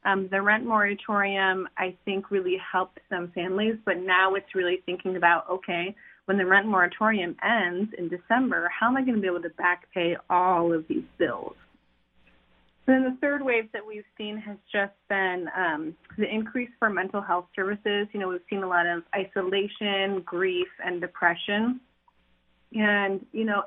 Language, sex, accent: English, female, American